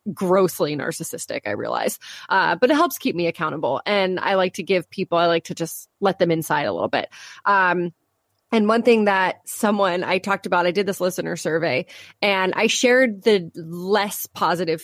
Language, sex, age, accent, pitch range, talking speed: English, female, 20-39, American, 175-220 Hz, 190 wpm